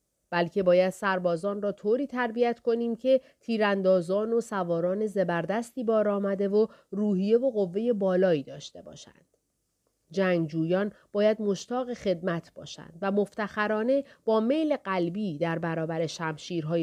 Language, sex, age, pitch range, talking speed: Persian, female, 40-59, 175-235 Hz, 120 wpm